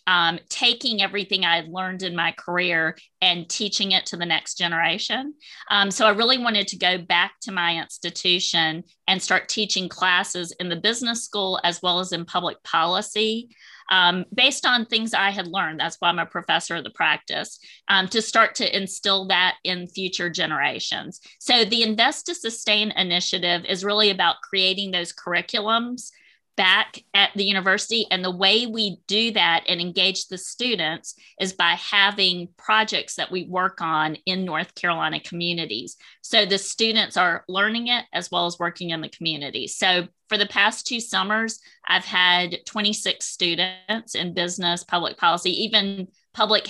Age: 40-59